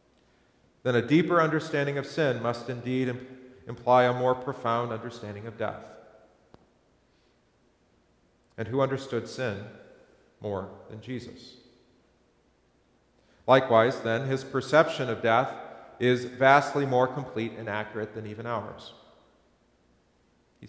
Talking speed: 110 wpm